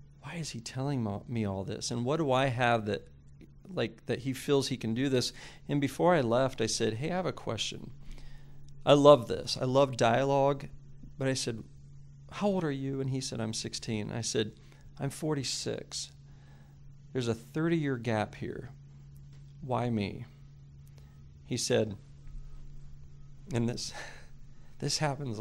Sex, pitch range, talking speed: male, 110-140 Hz, 160 wpm